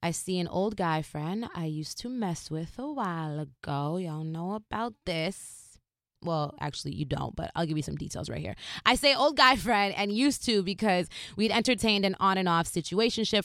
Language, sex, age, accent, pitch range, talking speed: English, female, 20-39, American, 165-245 Hz, 195 wpm